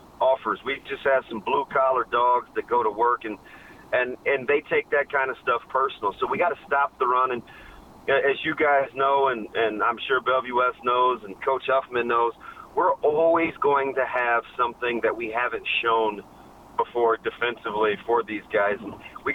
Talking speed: 185 wpm